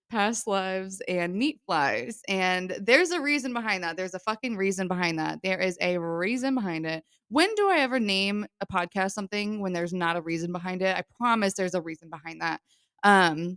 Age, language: 20-39, English